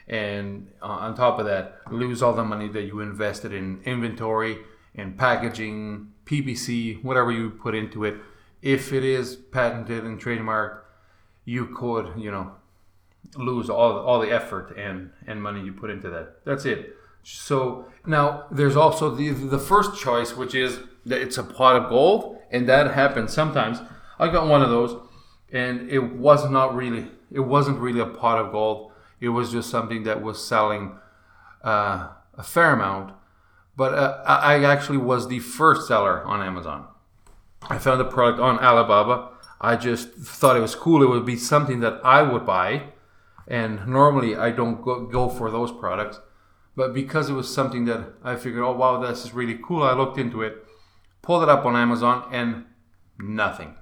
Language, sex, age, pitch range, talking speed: English, male, 30-49, 105-130 Hz, 175 wpm